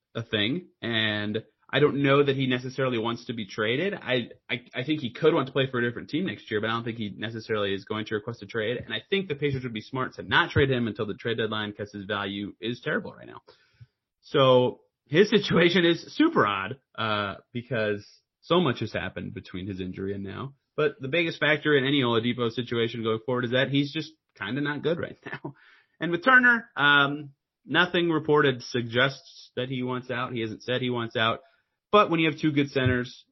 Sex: male